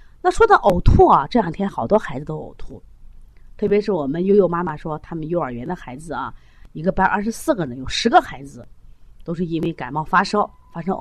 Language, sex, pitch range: Chinese, female, 165-255 Hz